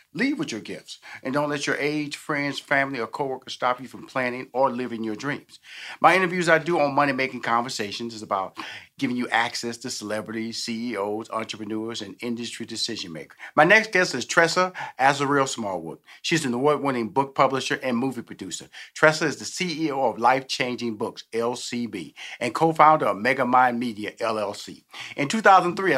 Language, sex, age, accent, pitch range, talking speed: English, male, 40-59, American, 120-160 Hz, 175 wpm